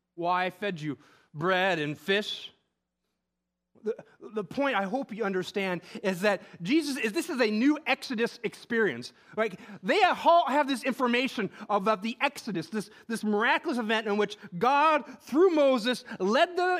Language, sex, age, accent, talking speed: English, male, 30-49, American, 160 wpm